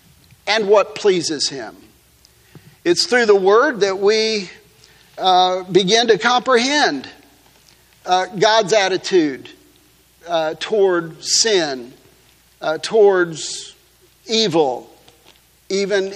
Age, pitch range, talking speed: 50-69, 185-250 Hz, 90 wpm